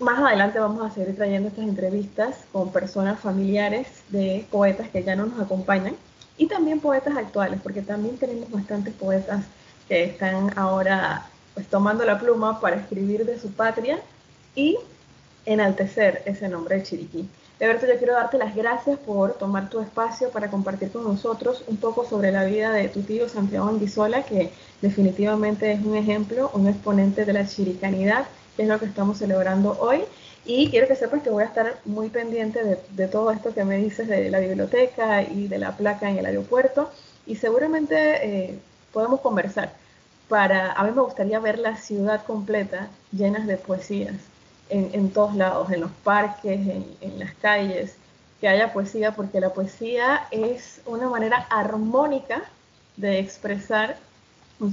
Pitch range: 195-230 Hz